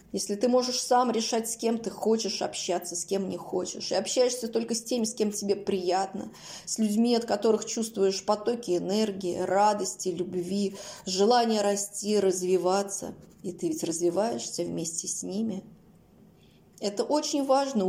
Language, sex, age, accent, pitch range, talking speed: Russian, female, 20-39, native, 190-245 Hz, 150 wpm